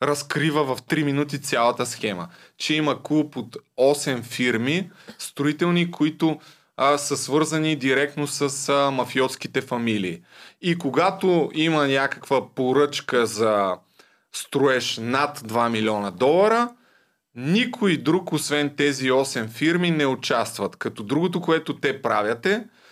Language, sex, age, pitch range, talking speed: Bulgarian, male, 30-49, 130-165 Hz, 120 wpm